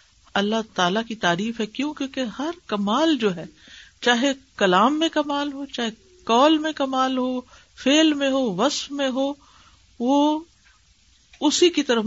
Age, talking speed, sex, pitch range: 50-69, 155 wpm, female, 200-270 Hz